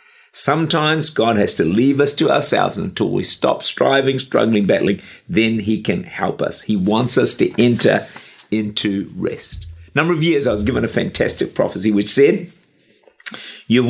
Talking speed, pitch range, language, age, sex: 165 wpm, 105-140 Hz, English, 50-69, male